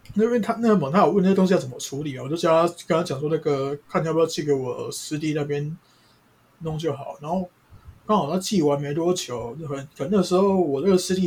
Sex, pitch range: male, 140-185 Hz